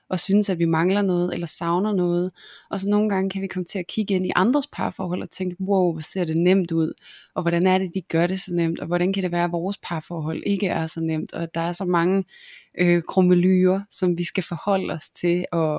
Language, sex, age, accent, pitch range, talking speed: Danish, female, 20-39, native, 170-195 Hz, 255 wpm